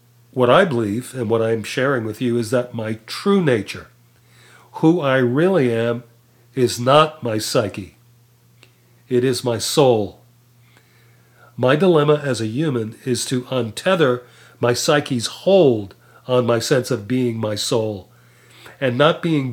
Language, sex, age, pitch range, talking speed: English, male, 50-69, 120-130 Hz, 150 wpm